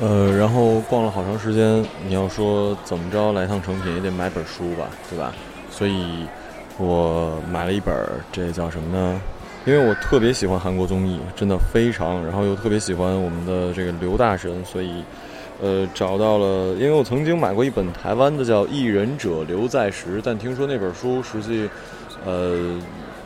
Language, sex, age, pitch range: Chinese, male, 20-39, 90-110 Hz